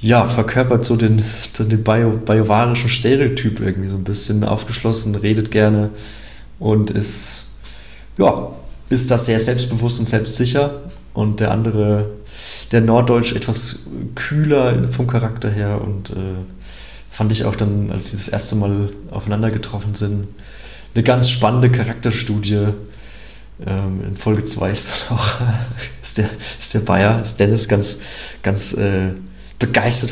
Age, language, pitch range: 20-39, German, 100-120 Hz